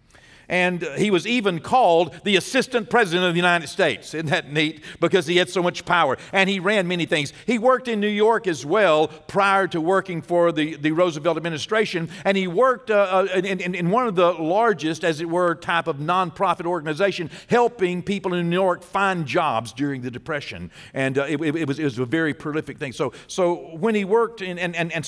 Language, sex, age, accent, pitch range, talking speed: English, male, 50-69, American, 115-175 Hz, 215 wpm